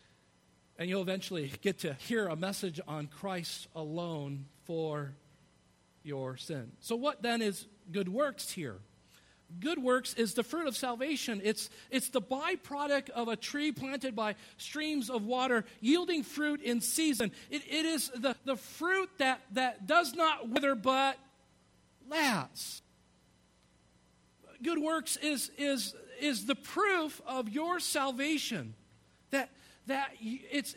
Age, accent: 50-69, American